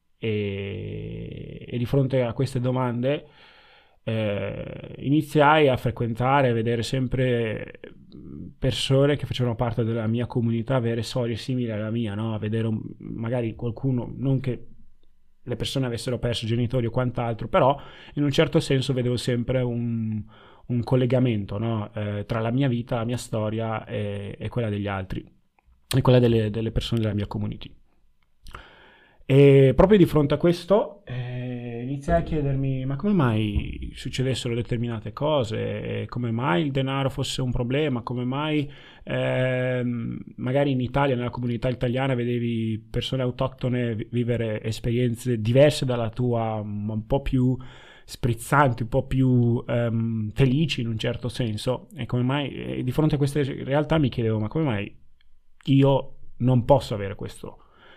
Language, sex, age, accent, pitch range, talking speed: Italian, male, 20-39, native, 115-135 Hz, 155 wpm